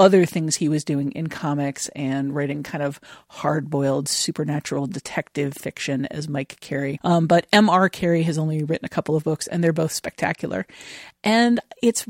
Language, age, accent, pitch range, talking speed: English, 40-59, American, 150-175 Hz, 175 wpm